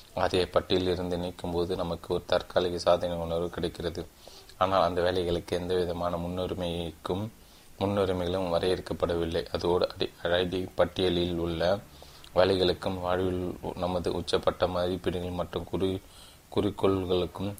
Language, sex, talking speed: Tamil, male, 100 wpm